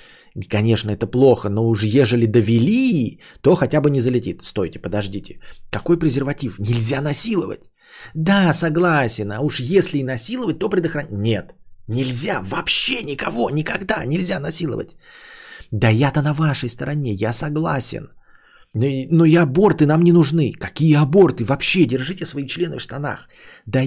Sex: male